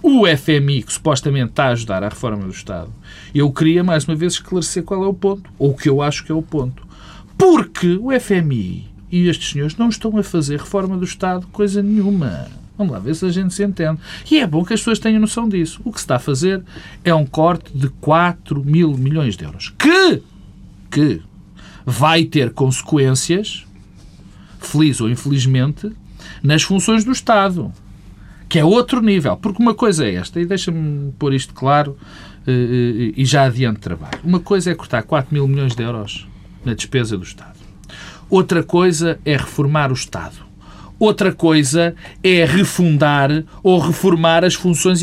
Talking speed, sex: 180 wpm, male